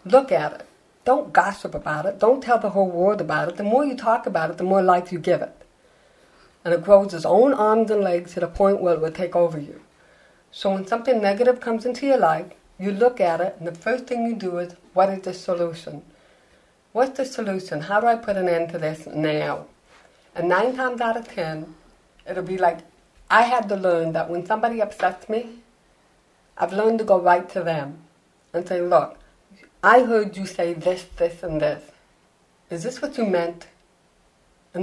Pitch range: 175-225 Hz